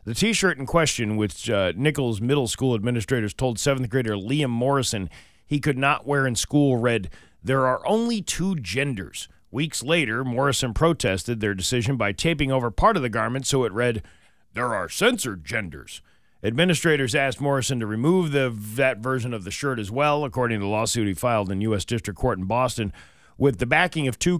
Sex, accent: male, American